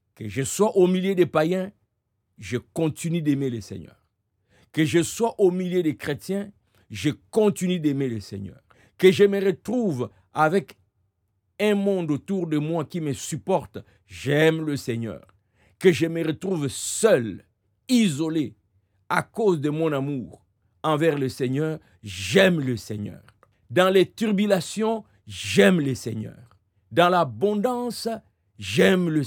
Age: 50-69